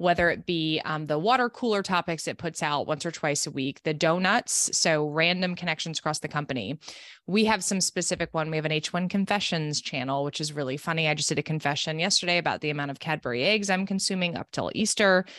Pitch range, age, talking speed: 155-195 Hz, 20-39, 220 wpm